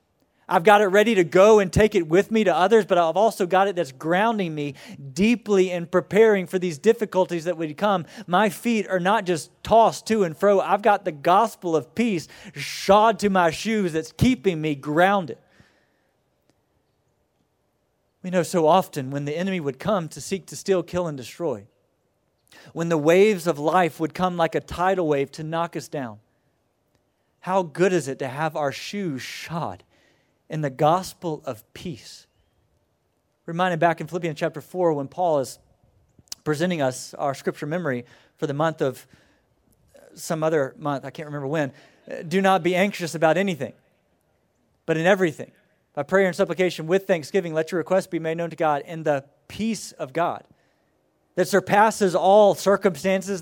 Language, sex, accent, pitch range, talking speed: English, male, American, 155-195 Hz, 175 wpm